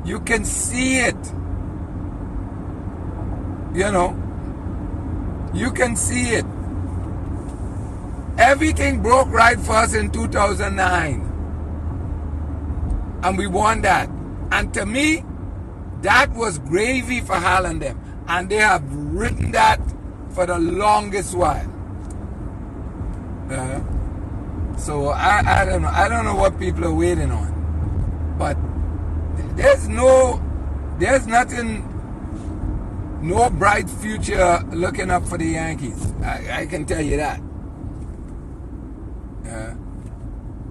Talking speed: 110 wpm